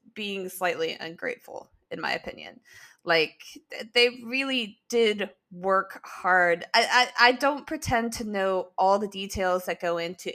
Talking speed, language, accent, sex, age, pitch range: 145 wpm, English, American, female, 20-39, 180-235 Hz